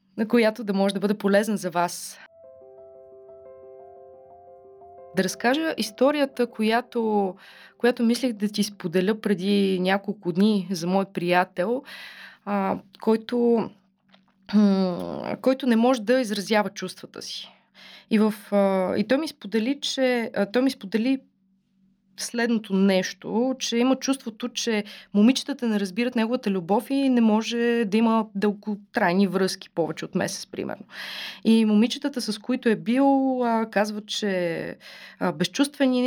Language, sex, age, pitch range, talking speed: Bulgarian, female, 20-39, 195-245 Hz, 130 wpm